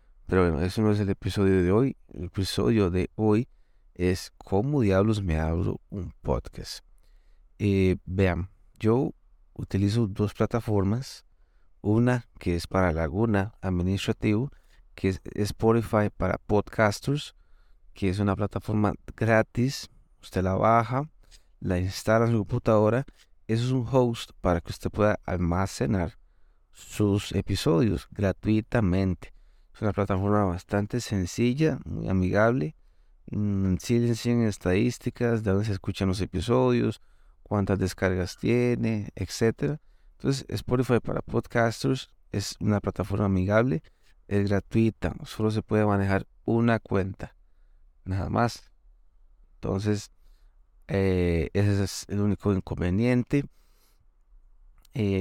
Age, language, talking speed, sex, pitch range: 30-49, Spanish, 115 wpm, male, 90-115 Hz